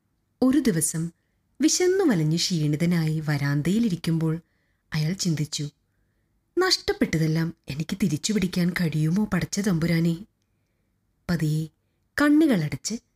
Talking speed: 75 wpm